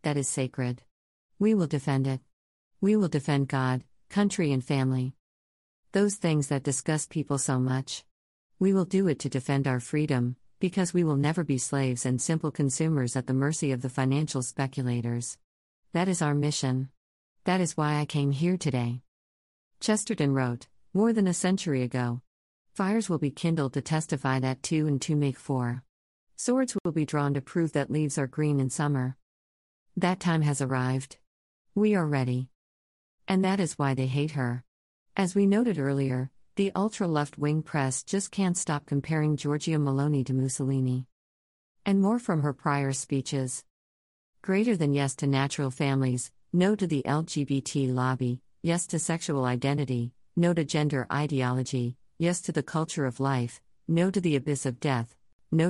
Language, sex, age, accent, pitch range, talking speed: English, female, 50-69, American, 130-160 Hz, 165 wpm